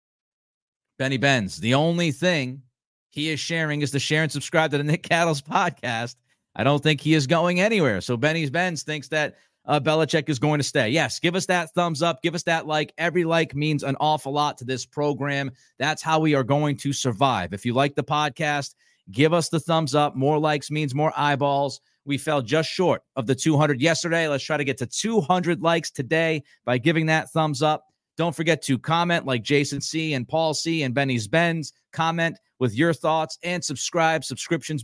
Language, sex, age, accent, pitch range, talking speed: English, male, 40-59, American, 140-165 Hz, 205 wpm